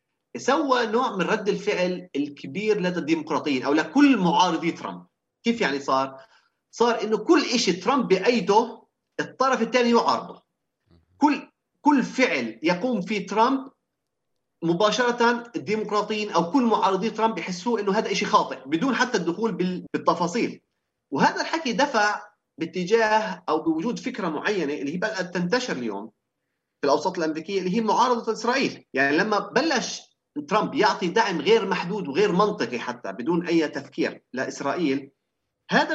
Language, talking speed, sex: Arabic, 135 wpm, male